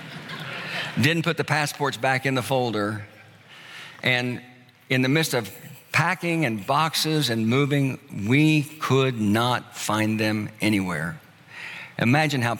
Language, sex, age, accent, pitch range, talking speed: English, male, 60-79, American, 120-150 Hz, 125 wpm